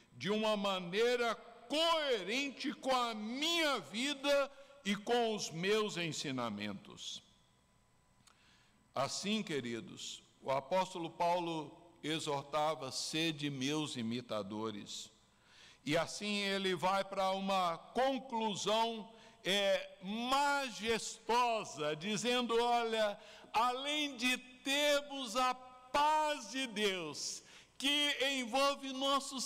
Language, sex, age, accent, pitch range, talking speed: Portuguese, male, 60-79, Brazilian, 175-260 Hz, 90 wpm